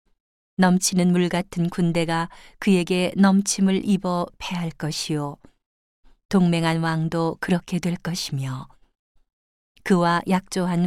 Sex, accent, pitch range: female, native, 165-190 Hz